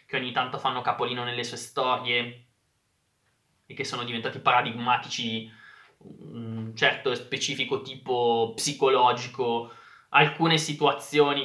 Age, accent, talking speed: 20-39, native, 110 wpm